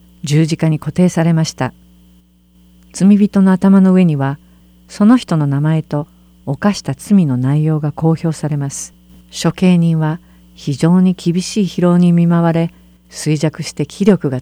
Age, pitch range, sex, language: 50-69, 130-175 Hz, female, Japanese